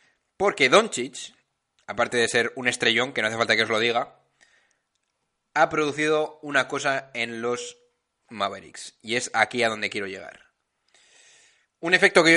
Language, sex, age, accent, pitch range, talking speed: Spanish, male, 20-39, Spanish, 125-160 Hz, 160 wpm